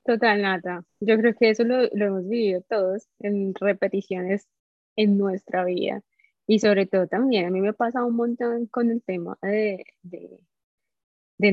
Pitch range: 185-215 Hz